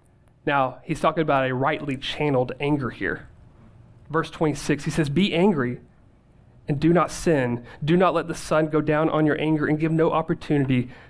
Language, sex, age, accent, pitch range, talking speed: English, male, 30-49, American, 125-160 Hz, 180 wpm